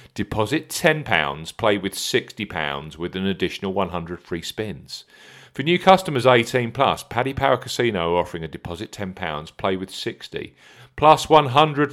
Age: 40-59